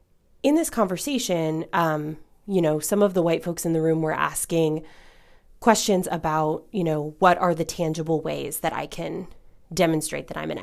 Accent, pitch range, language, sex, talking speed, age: American, 155-175 Hz, English, female, 180 wpm, 20-39